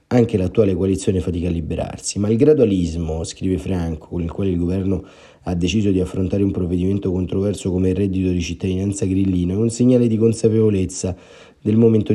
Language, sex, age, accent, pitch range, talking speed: Italian, male, 30-49, native, 90-105 Hz, 180 wpm